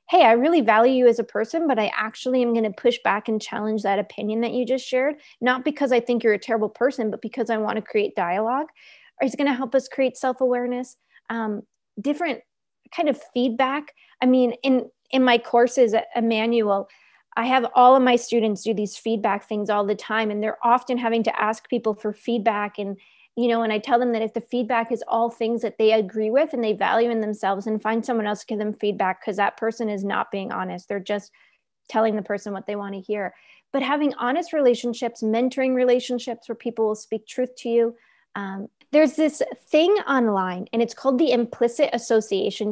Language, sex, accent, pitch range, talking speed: English, female, American, 215-255 Hz, 215 wpm